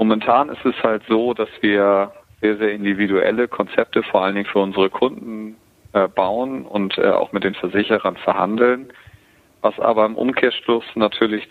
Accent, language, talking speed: German, German, 150 wpm